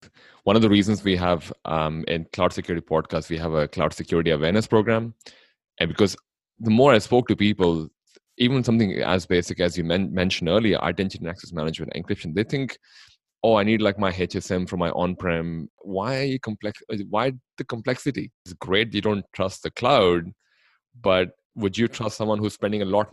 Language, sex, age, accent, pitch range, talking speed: English, male, 30-49, Indian, 90-110 Hz, 190 wpm